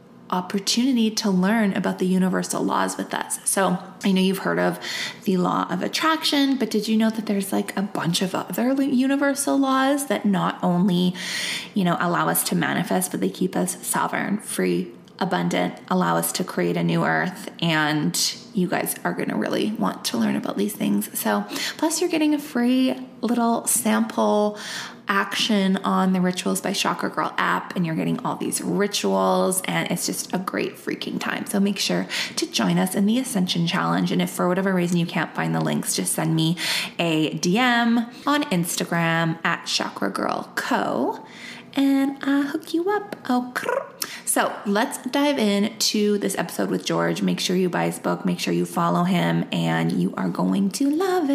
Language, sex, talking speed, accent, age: English, female, 190 wpm, American, 20-39